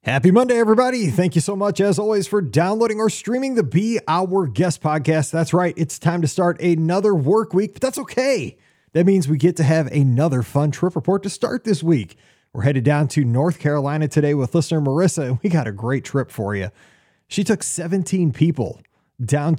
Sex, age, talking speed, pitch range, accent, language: male, 30-49, 205 wpm, 145-195 Hz, American, English